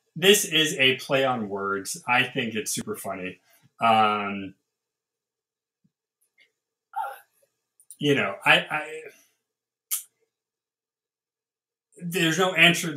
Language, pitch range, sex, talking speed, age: English, 115-175 Hz, male, 95 wpm, 30-49